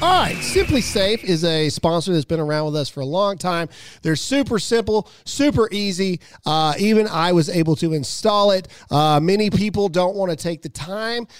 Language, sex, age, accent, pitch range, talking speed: English, male, 40-59, American, 160-220 Hz, 200 wpm